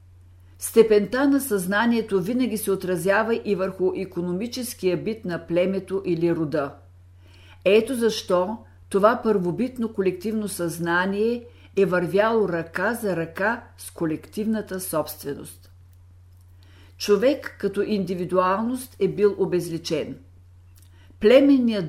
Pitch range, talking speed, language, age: 150-210 Hz, 95 wpm, Bulgarian, 50-69